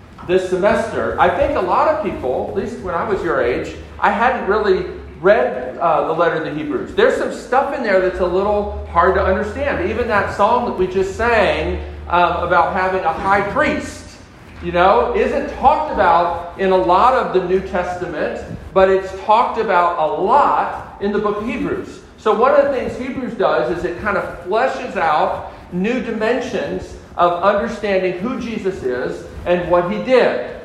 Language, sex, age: English, male, 40-59